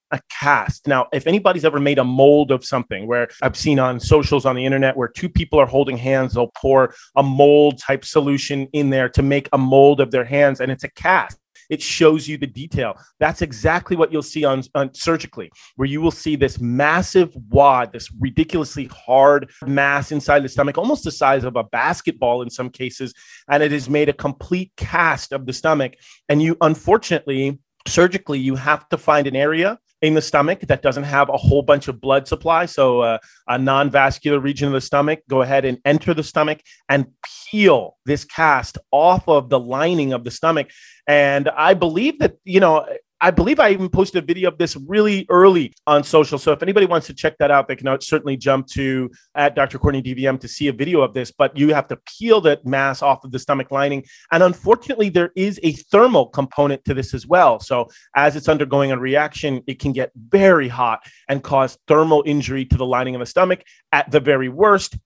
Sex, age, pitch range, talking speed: male, 30-49, 135-155 Hz, 210 wpm